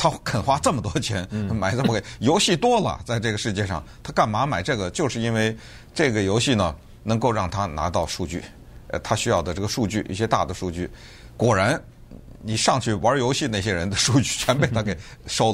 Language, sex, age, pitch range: Chinese, male, 50-69, 100-125 Hz